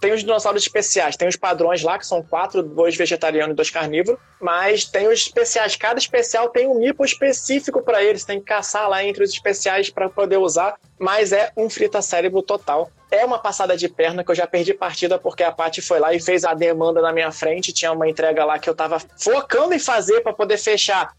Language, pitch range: Portuguese, 170-220 Hz